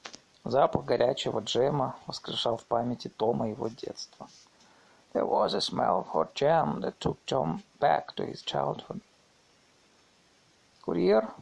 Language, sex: Russian, male